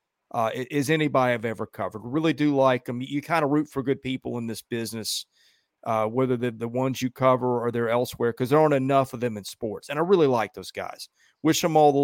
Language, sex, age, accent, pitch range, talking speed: English, male, 40-59, American, 125-155 Hz, 235 wpm